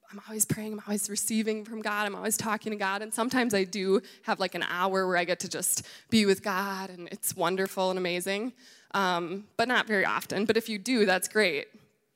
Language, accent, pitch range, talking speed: English, American, 190-230 Hz, 220 wpm